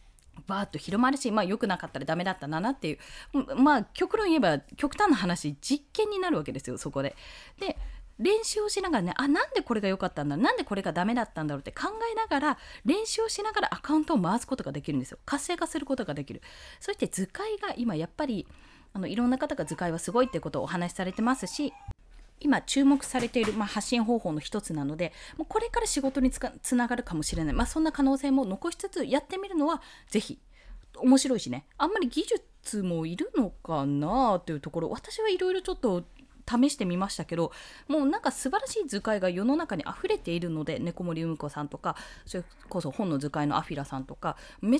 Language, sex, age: Japanese, female, 20-39